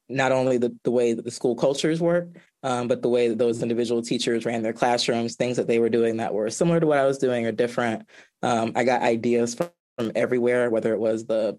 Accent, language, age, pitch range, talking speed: American, English, 20-39, 115-135 Hz, 240 wpm